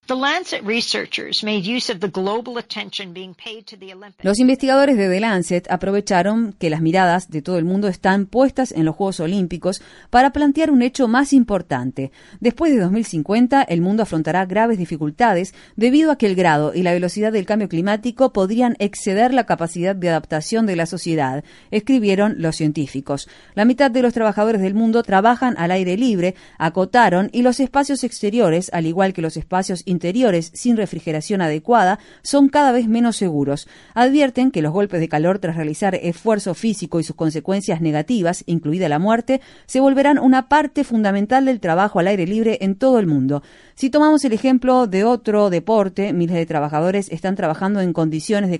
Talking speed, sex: 165 wpm, female